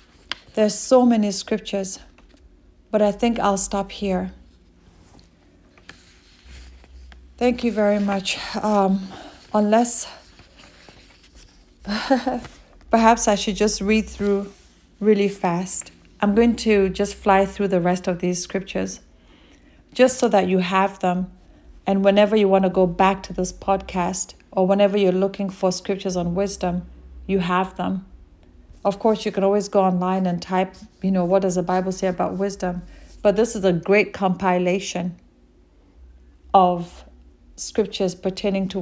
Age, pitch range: 30-49, 180-205 Hz